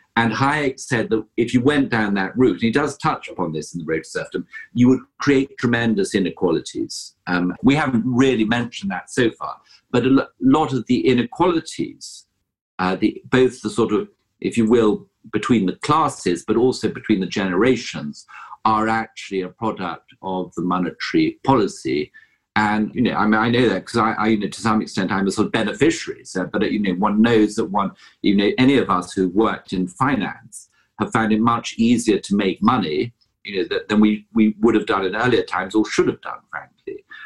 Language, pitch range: English, 105-130 Hz